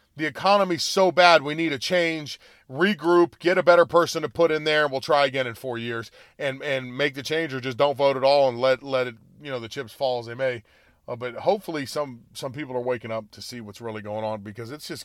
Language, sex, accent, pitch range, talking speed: English, male, American, 130-160 Hz, 260 wpm